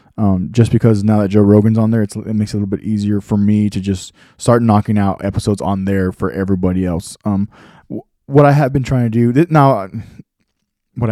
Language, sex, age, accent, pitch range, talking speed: English, male, 20-39, American, 105-125 Hz, 215 wpm